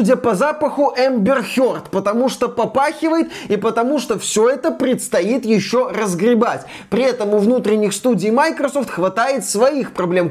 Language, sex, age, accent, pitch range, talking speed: Russian, male, 20-39, native, 180-230 Hz, 140 wpm